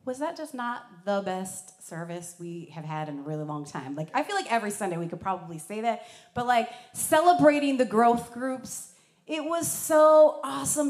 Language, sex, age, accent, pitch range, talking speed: English, female, 30-49, American, 190-255 Hz, 200 wpm